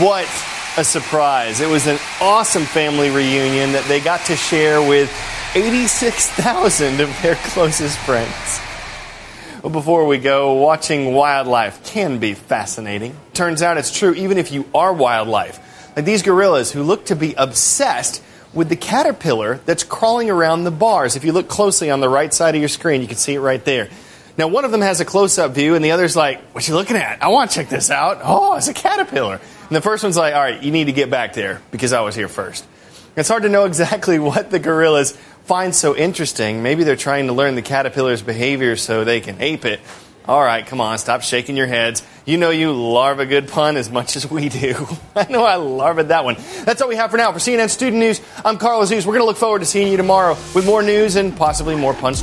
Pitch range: 140-195 Hz